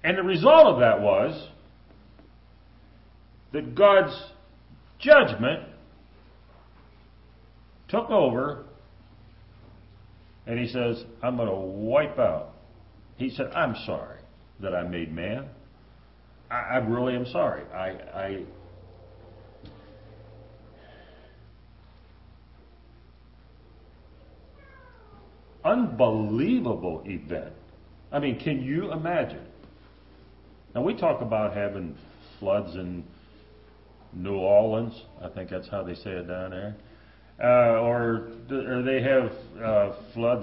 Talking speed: 100 wpm